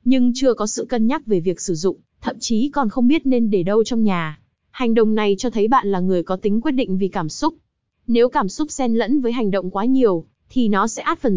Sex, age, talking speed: female, 20-39, 265 wpm